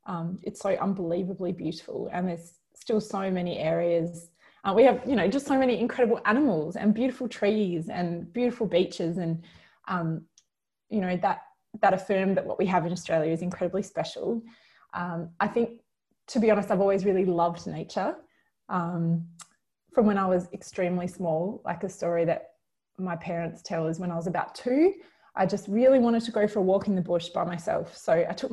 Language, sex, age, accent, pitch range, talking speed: English, female, 20-39, Australian, 175-230 Hz, 190 wpm